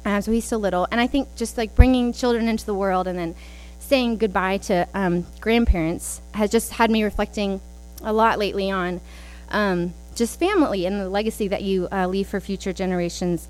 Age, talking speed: 20-39, 195 wpm